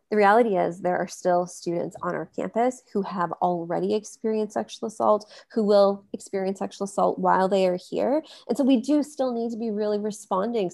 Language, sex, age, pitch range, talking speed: English, female, 20-39, 180-215 Hz, 195 wpm